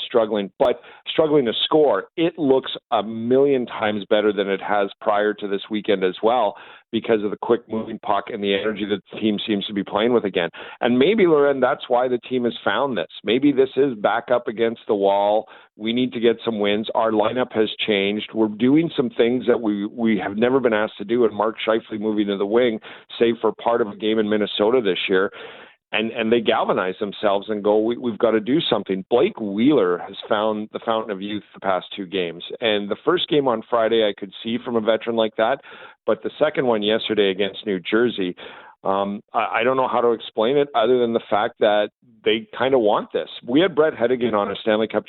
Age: 40-59